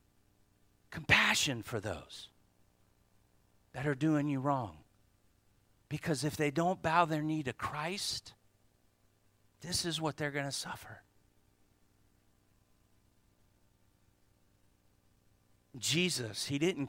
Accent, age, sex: American, 40-59, male